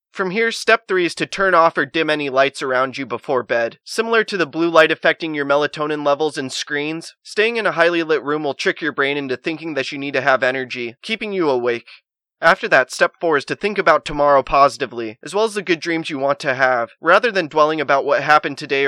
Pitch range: 135-180 Hz